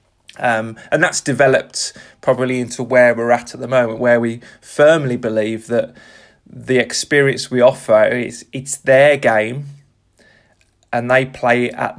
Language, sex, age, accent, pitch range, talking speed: English, male, 20-39, British, 115-130 Hz, 145 wpm